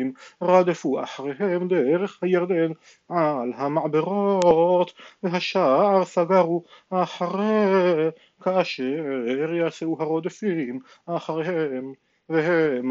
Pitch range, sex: 155-185 Hz, male